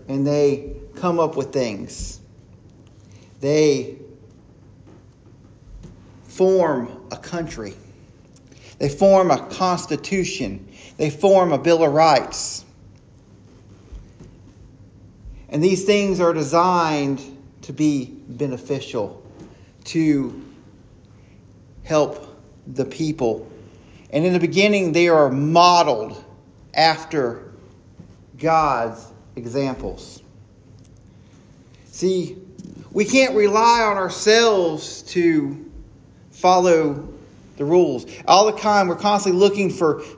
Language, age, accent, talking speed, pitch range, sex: English, 40-59, American, 90 wpm, 115-175 Hz, male